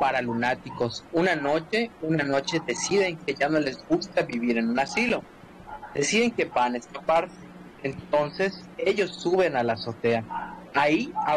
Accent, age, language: Mexican, 30-49, Spanish